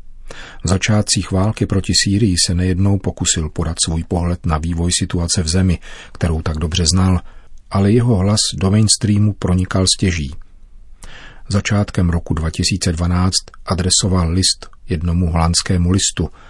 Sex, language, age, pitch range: male, Czech, 40-59, 85-100 Hz